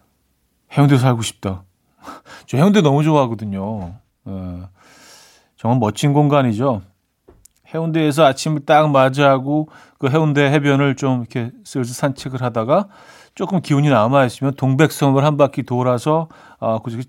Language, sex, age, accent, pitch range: Korean, male, 40-59, native, 115-155 Hz